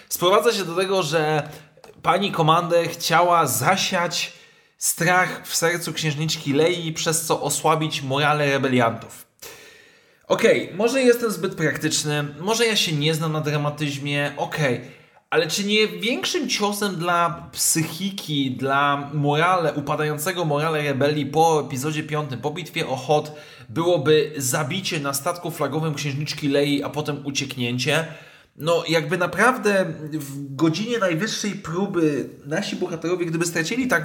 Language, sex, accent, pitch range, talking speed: Polish, male, native, 150-185 Hz, 130 wpm